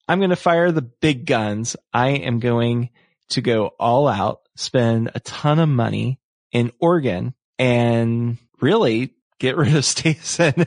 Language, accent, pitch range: English, American, 115-150 Hz